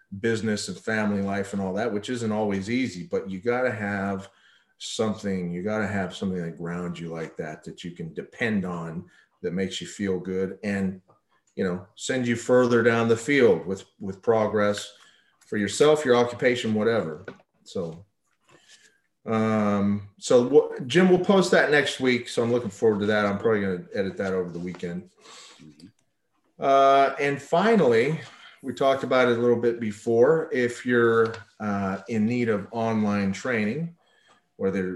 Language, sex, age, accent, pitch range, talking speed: English, male, 40-59, American, 95-120 Hz, 170 wpm